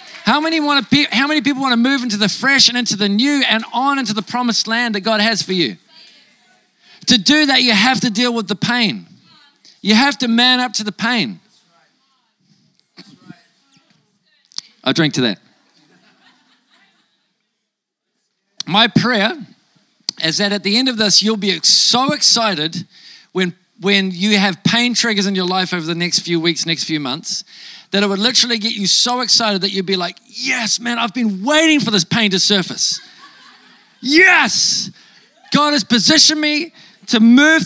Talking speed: 175 wpm